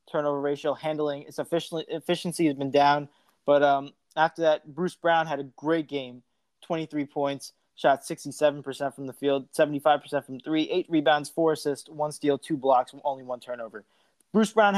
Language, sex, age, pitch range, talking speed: English, male, 20-39, 145-180 Hz, 165 wpm